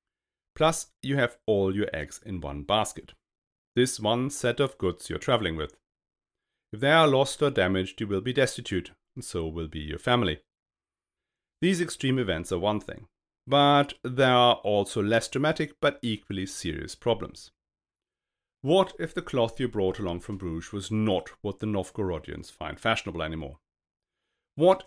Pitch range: 90-135 Hz